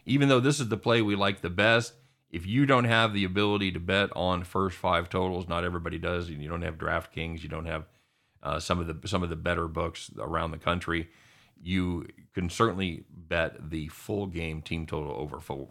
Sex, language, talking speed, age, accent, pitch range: male, English, 215 wpm, 40-59, American, 85-140 Hz